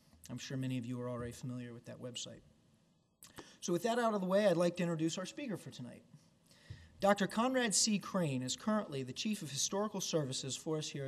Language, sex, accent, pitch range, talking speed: English, male, American, 145-185 Hz, 215 wpm